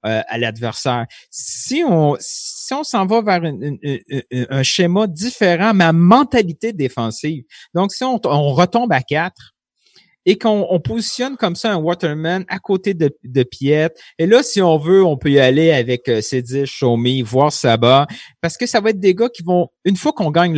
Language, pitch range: French, 140-200 Hz